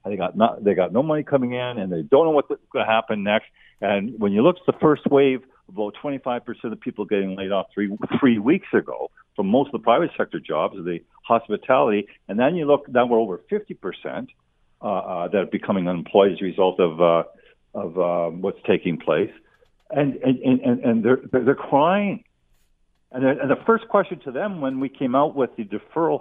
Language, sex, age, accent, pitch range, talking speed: English, male, 50-69, American, 105-150 Hz, 220 wpm